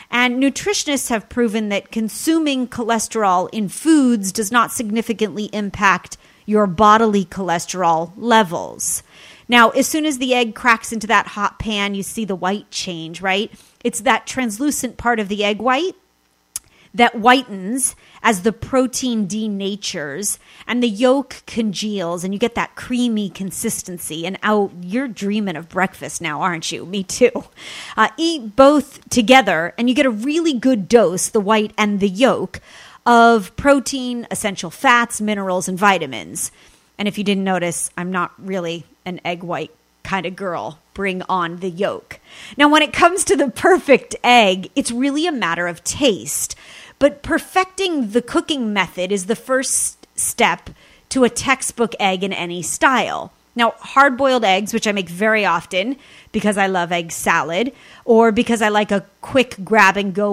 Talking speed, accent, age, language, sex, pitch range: 160 wpm, American, 30-49, English, female, 190-245 Hz